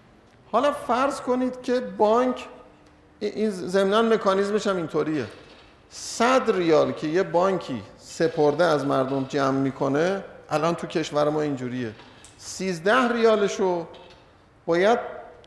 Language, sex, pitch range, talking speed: Persian, male, 135-190 Hz, 110 wpm